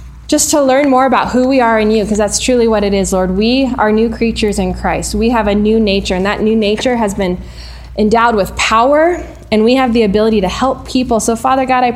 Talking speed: 245 wpm